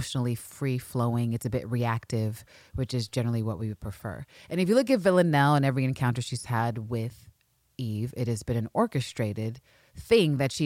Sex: female